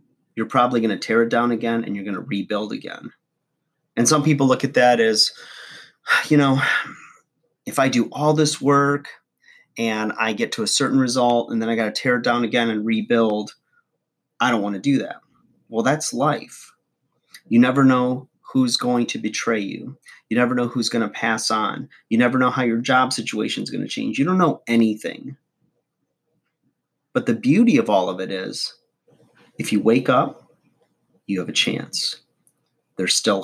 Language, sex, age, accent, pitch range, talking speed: English, male, 30-49, American, 110-140 Hz, 190 wpm